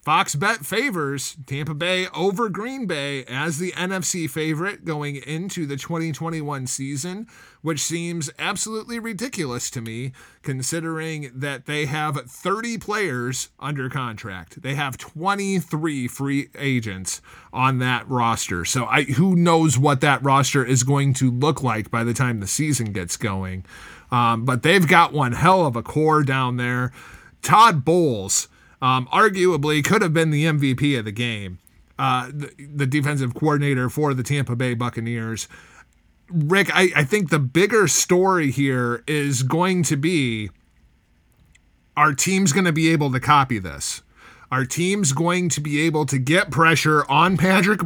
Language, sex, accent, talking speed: English, male, American, 155 wpm